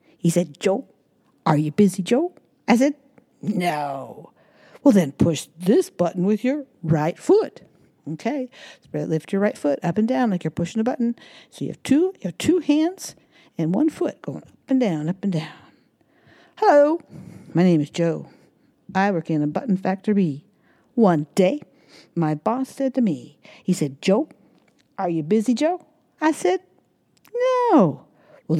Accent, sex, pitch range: American, female, 170-270 Hz